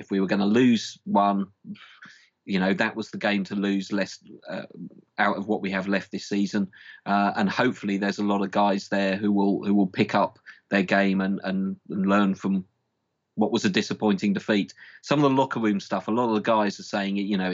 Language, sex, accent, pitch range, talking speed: English, male, British, 95-105 Hz, 230 wpm